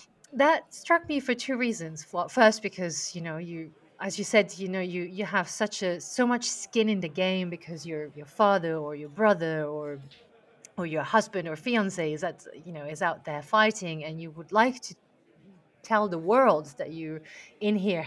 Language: English